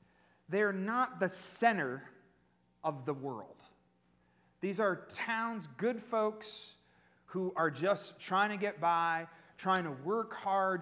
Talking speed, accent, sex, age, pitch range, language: 130 wpm, American, male, 30-49, 125-200 Hz, English